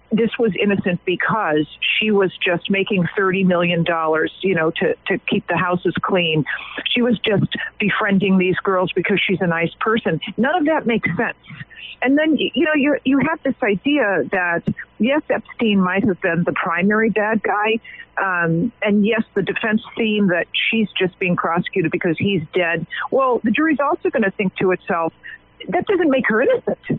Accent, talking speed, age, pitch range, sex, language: American, 180 wpm, 50-69, 185-255 Hz, female, English